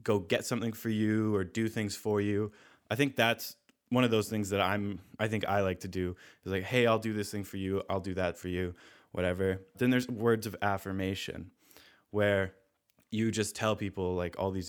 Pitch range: 95-115 Hz